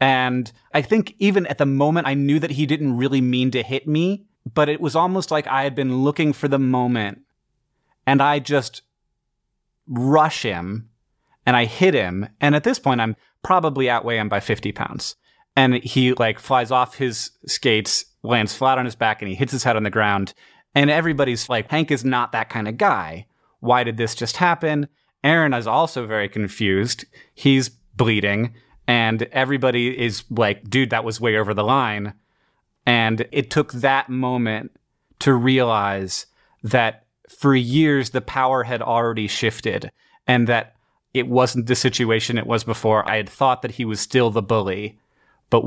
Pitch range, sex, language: 110-135 Hz, male, English